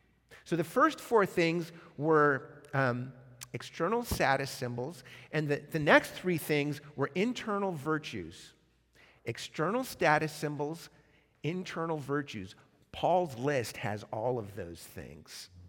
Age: 50-69